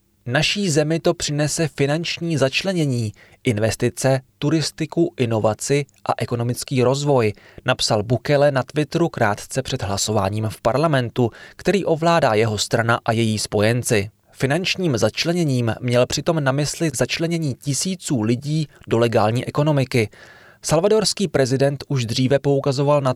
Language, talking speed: Czech, 120 wpm